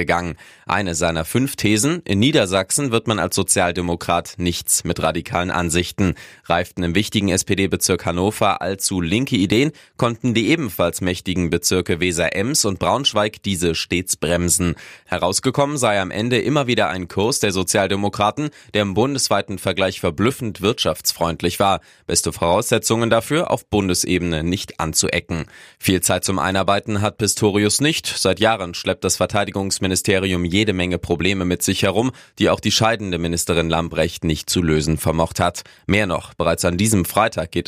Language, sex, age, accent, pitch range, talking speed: German, male, 20-39, German, 85-105 Hz, 150 wpm